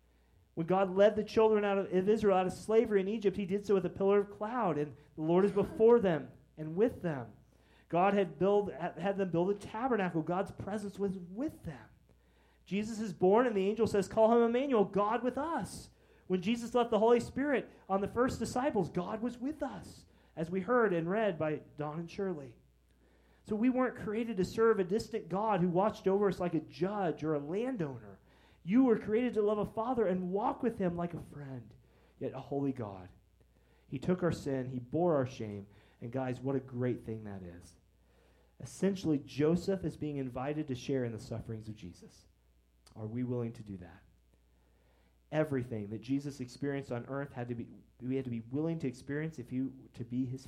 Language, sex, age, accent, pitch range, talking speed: English, male, 30-49, American, 120-205 Hz, 205 wpm